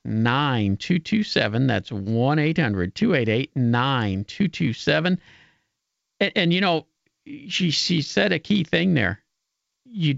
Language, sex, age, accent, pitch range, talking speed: English, male, 50-69, American, 120-160 Hz, 105 wpm